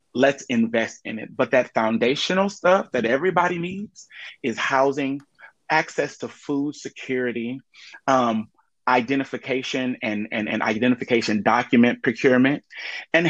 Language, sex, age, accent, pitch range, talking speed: English, male, 30-49, American, 115-135 Hz, 115 wpm